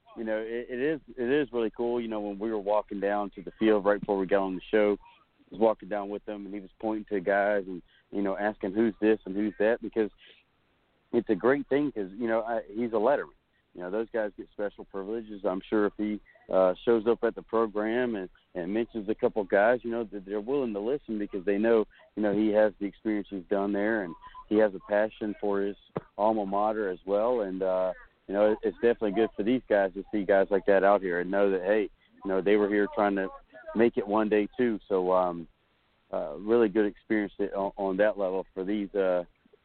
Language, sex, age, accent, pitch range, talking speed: English, male, 40-59, American, 100-115 Hz, 240 wpm